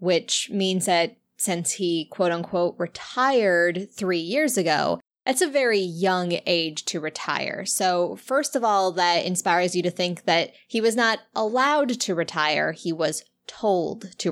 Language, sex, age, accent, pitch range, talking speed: English, female, 20-39, American, 175-225 Hz, 155 wpm